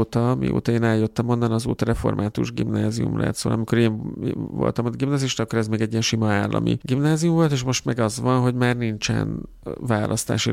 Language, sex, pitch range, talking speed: Hungarian, male, 105-125 Hz, 190 wpm